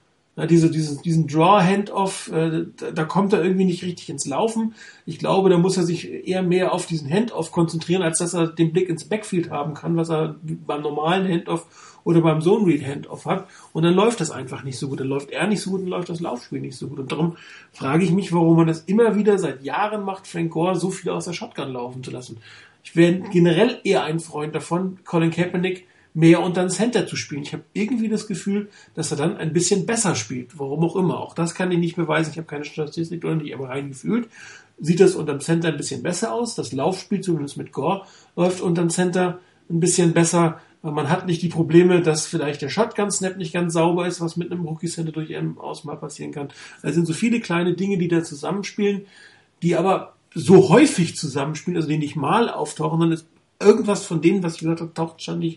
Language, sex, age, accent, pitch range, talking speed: German, male, 40-59, German, 160-185 Hz, 225 wpm